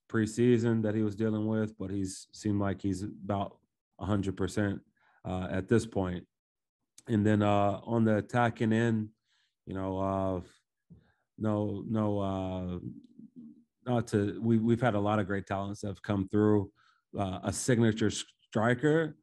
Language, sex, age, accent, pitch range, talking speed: English, male, 30-49, American, 95-105 Hz, 155 wpm